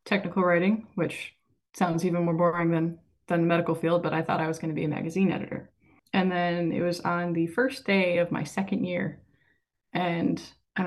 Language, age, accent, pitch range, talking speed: English, 20-39, American, 165-190 Hz, 210 wpm